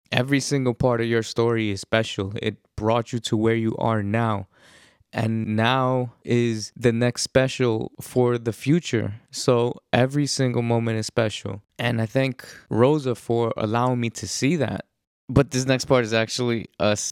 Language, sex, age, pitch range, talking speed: English, male, 20-39, 105-120 Hz, 170 wpm